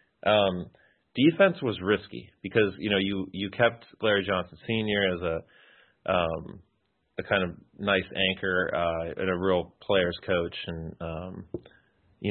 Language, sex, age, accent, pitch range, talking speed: English, male, 30-49, American, 85-100 Hz, 145 wpm